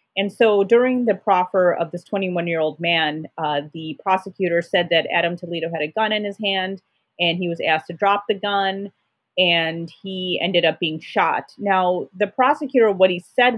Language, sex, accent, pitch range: English, female, American, 165-195 Hz